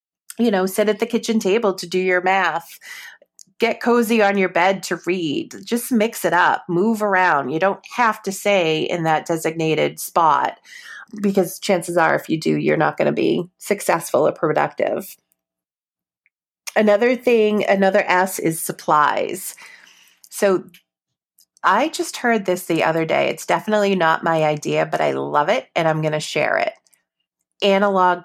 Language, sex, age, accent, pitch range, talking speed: English, female, 30-49, American, 165-225 Hz, 165 wpm